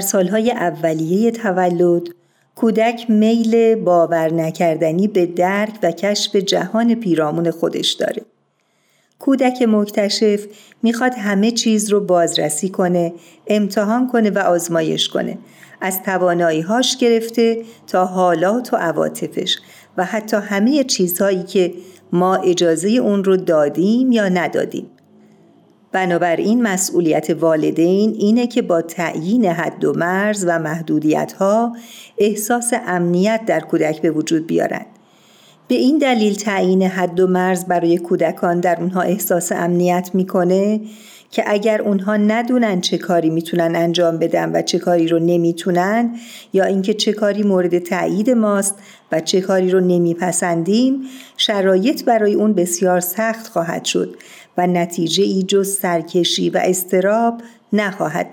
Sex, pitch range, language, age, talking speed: female, 175-215 Hz, Persian, 50-69, 125 wpm